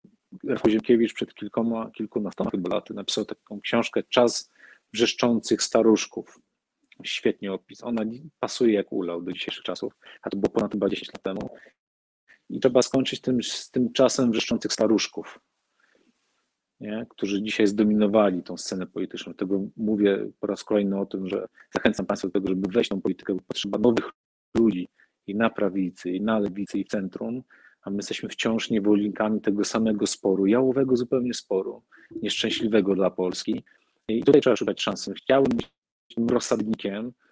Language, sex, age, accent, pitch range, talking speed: Polish, male, 40-59, native, 100-115 Hz, 155 wpm